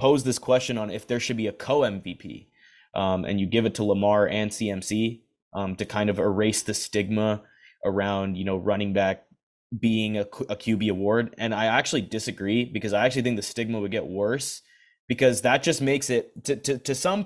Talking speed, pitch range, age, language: 200 wpm, 100-125 Hz, 20-39, English